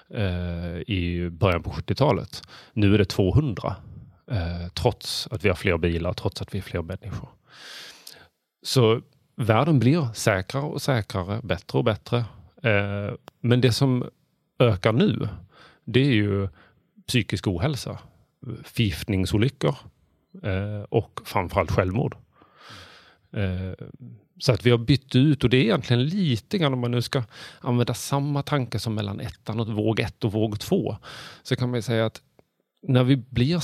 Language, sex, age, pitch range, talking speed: Swedish, male, 30-49, 100-130 Hz, 145 wpm